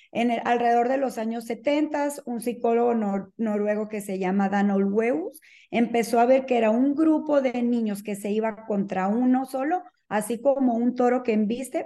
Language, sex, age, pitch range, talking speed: Spanish, female, 40-59, 205-255 Hz, 185 wpm